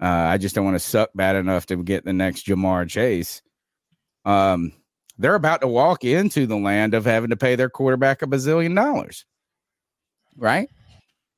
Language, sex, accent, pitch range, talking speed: English, male, American, 95-130 Hz, 175 wpm